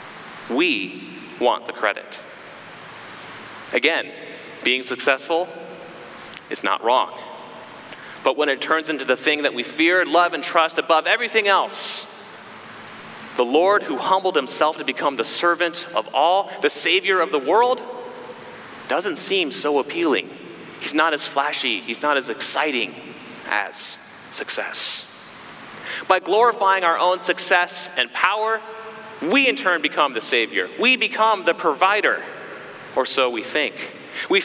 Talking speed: 135 wpm